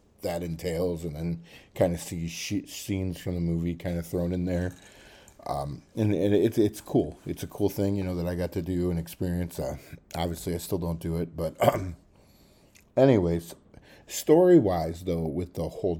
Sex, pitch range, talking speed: male, 85-100 Hz, 190 wpm